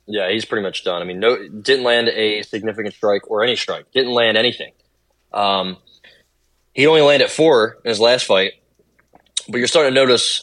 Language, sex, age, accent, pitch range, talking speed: English, male, 20-39, American, 95-120 Hz, 190 wpm